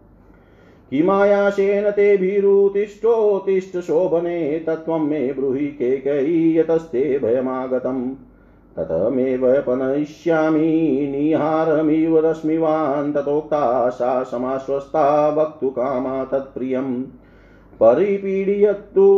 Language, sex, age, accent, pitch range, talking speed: Hindi, male, 40-59, native, 120-170 Hz, 35 wpm